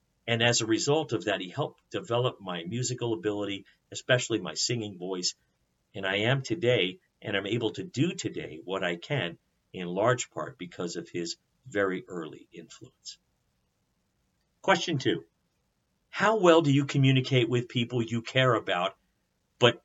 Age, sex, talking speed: 50-69, male, 155 wpm